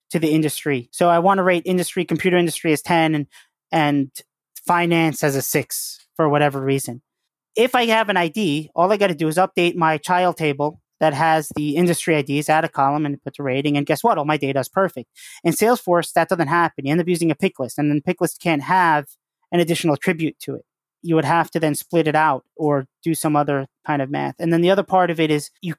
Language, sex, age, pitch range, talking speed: English, male, 20-39, 150-180 Hz, 240 wpm